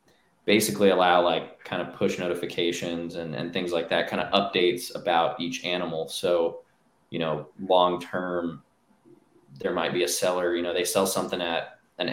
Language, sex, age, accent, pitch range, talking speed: English, male, 20-39, American, 85-95 Hz, 170 wpm